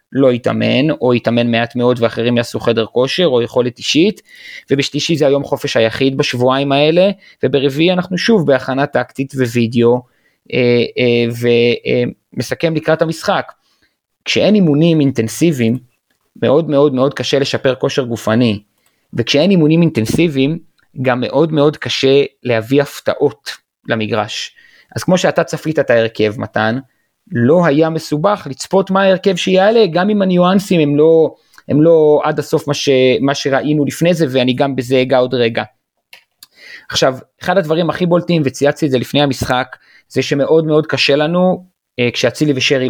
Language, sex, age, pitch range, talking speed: Hebrew, male, 30-49, 125-165 Hz, 145 wpm